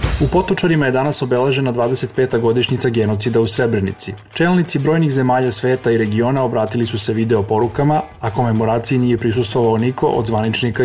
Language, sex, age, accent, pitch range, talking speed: English, male, 30-49, Serbian, 115-140 Hz, 155 wpm